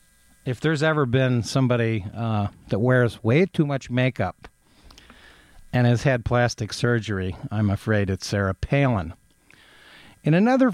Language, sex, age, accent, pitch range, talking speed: English, male, 50-69, American, 115-150 Hz, 135 wpm